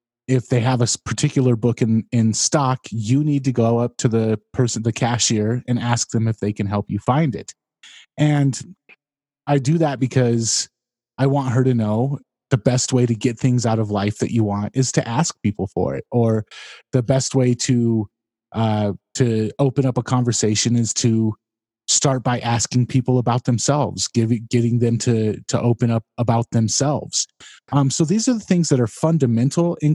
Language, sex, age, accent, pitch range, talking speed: English, male, 30-49, American, 110-135 Hz, 190 wpm